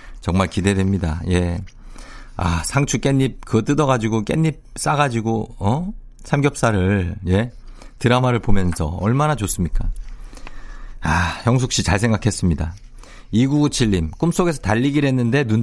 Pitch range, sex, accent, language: 95-145 Hz, male, native, Korean